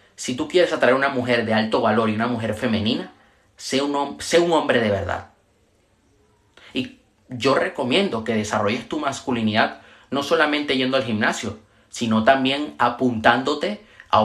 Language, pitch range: Spanish, 105-130 Hz